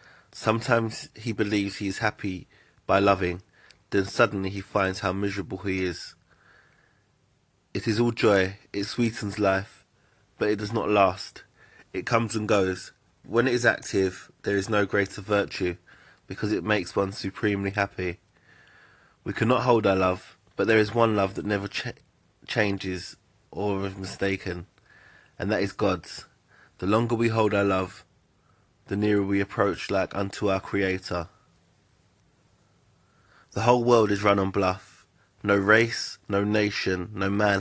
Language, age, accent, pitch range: English, 20-39, British, 95-110 Hz